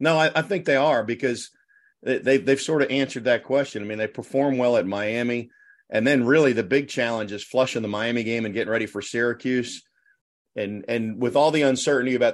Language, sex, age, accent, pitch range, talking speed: English, male, 40-59, American, 110-135 Hz, 220 wpm